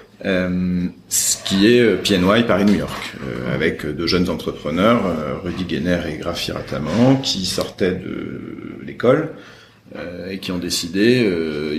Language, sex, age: French, male, 40-59